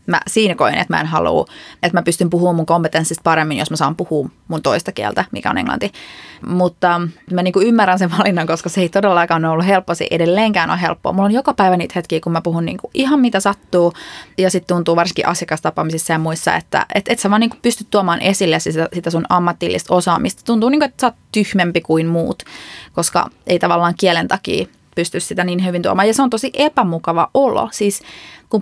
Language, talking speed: Finnish, 210 wpm